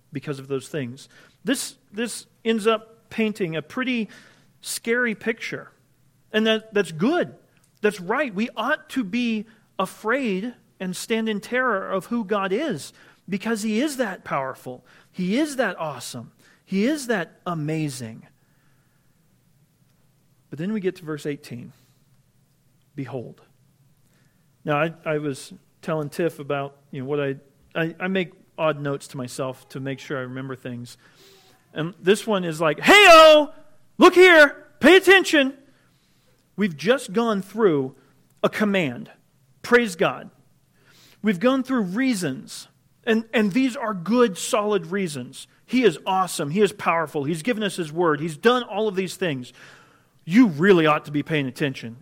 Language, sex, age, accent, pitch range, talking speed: English, male, 40-59, American, 145-220 Hz, 150 wpm